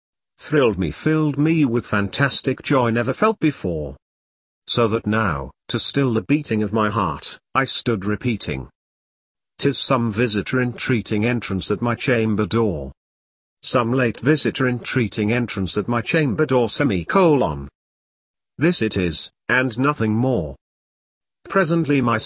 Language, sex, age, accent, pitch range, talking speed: English, male, 50-69, British, 90-140 Hz, 135 wpm